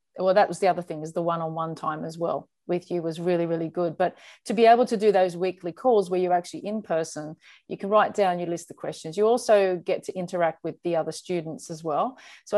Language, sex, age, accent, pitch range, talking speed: English, female, 40-59, Australian, 165-195 Hz, 250 wpm